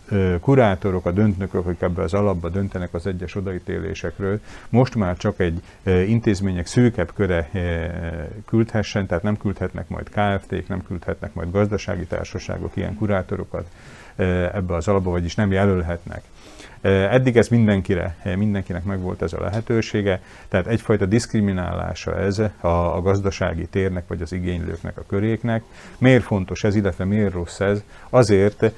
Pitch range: 90-105 Hz